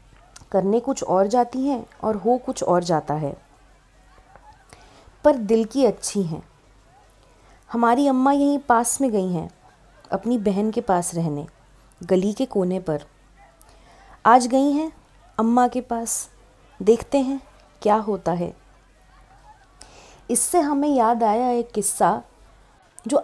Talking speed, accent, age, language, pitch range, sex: 130 wpm, native, 20-39, Hindi, 180-255 Hz, female